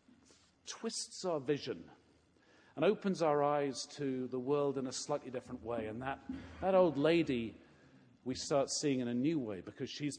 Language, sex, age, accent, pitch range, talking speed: English, male, 50-69, British, 120-155 Hz, 170 wpm